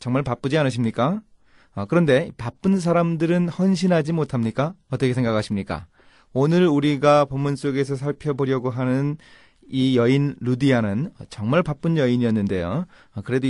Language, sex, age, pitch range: Korean, male, 30-49, 115-155 Hz